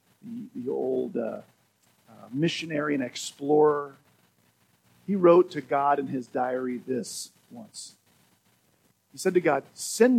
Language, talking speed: English, 125 wpm